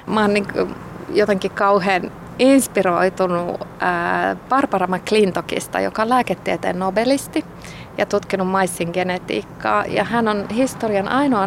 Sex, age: female, 30-49